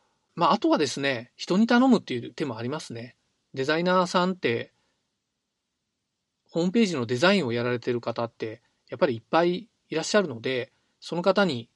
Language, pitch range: Japanese, 125-210 Hz